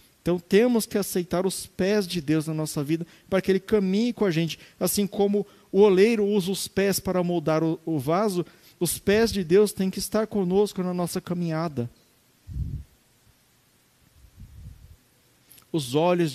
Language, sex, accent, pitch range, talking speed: Portuguese, male, Brazilian, 155-190 Hz, 160 wpm